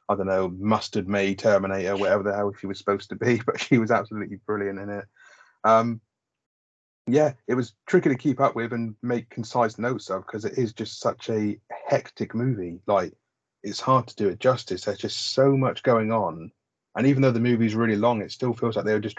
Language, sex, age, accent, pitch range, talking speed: English, male, 30-49, British, 100-120 Hz, 220 wpm